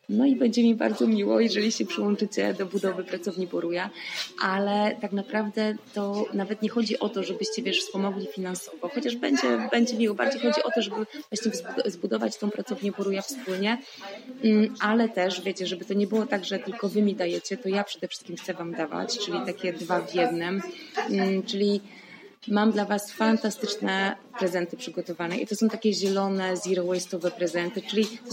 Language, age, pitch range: Polish, 20-39, 180-220 Hz